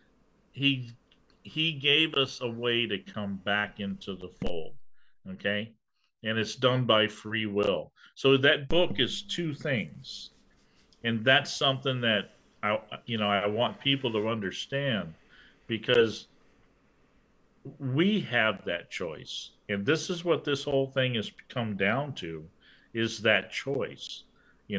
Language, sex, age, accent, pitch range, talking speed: English, male, 50-69, American, 100-135 Hz, 140 wpm